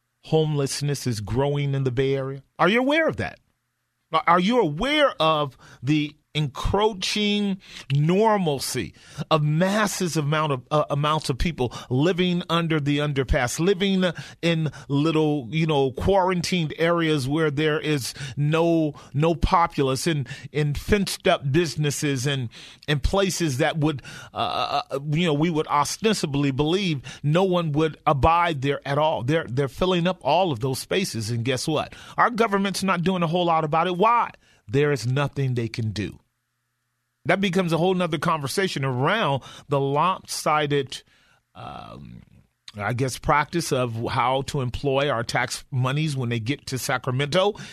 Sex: male